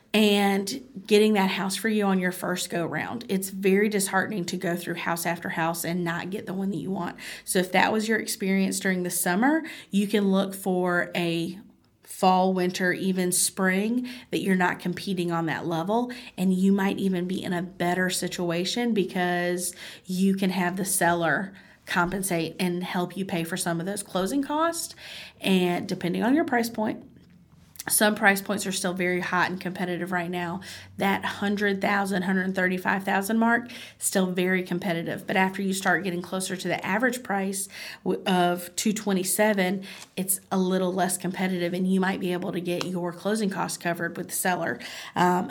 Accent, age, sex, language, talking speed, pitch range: American, 30-49, female, English, 175 wpm, 175-200 Hz